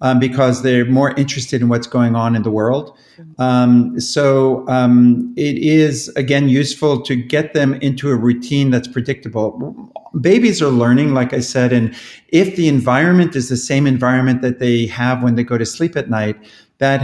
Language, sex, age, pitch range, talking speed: English, male, 50-69, 120-140 Hz, 185 wpm